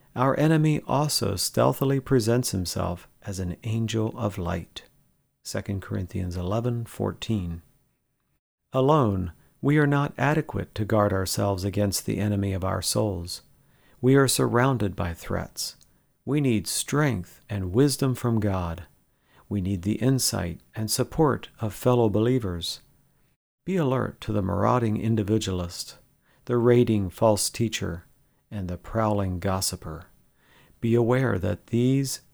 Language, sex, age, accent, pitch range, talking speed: English, male, 50-69, American, 95-125 Hz, 125 wpm